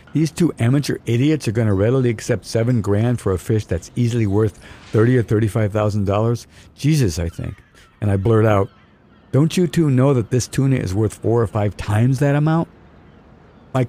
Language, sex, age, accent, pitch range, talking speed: English, male, 60-79, American, 100-130 Hz, 195 wpm